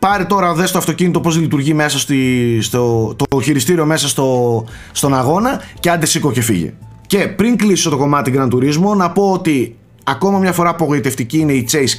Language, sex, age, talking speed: Greek, male, 30-49, 190 wpm